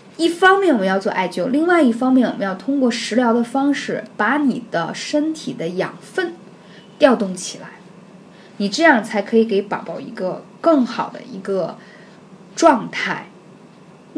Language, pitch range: Chinese, 195-245 Hz